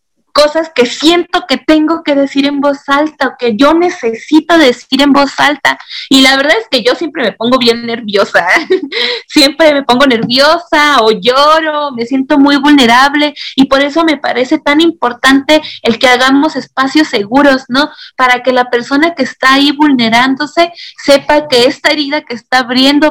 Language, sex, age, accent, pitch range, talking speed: Spanish, female, 30-49, Mexican, 240-295 Hz, 175 wpm